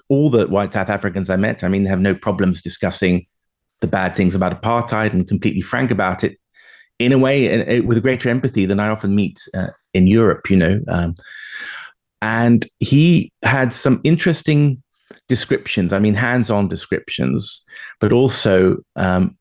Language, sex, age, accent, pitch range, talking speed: English, male, 30-49, British, 95-120 Hz, 160 wpm